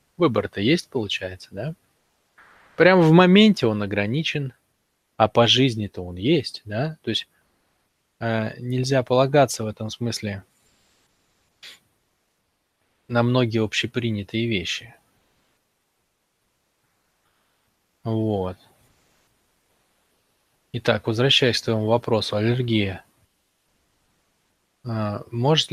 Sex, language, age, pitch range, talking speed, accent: male, Russian, 20-39, 105-130 Hz, 80 wpm, native